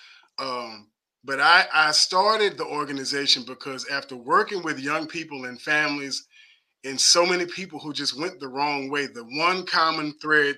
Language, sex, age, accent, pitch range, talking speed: English, male, 30-49, American, 135-165 Hz, 165 wpm